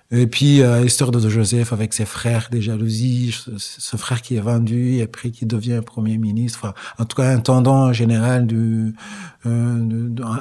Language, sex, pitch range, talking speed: French, male, 110-130 Hz, 190 wpm